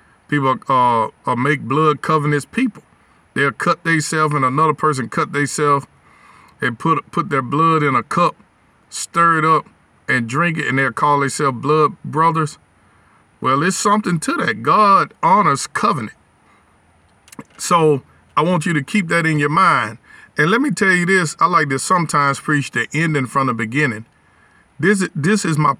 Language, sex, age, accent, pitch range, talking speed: English, male, 50-69, American, 135-165 Hz, 175 wpm